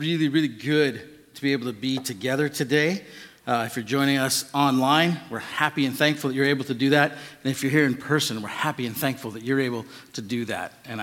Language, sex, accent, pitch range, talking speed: English, male, American, 125-150 Hz, 235 wpm